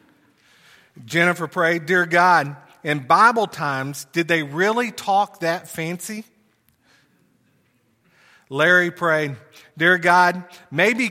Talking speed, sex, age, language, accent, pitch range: 95 wpm, male, 40-59, English, American, 150-185 Hz